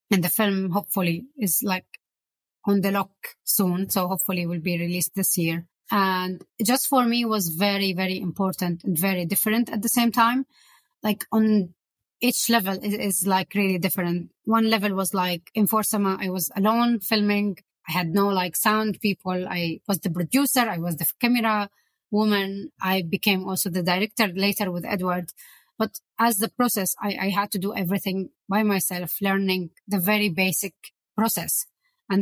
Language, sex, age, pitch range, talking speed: English, female, 20-39, 185-215 Hz, 175 wpm